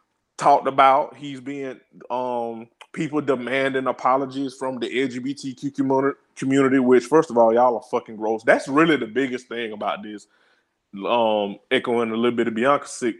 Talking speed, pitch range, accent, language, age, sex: 155 wpm, 125-155 Hz, American, English, 20-39, male